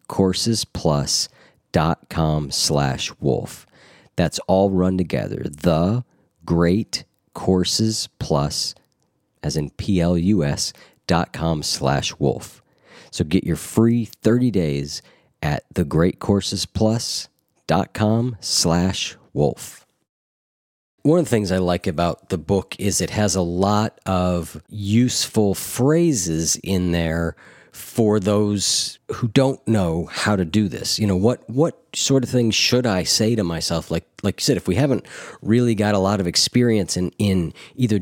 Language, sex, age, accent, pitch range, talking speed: English, male, 40-59, American, 90-115 Hz, 125 wpm